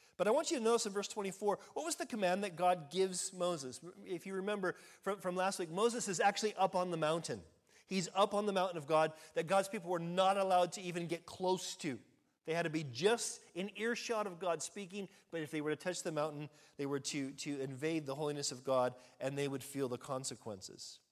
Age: 40-59